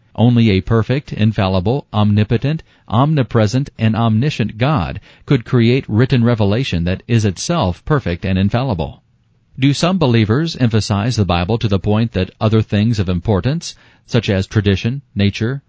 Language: English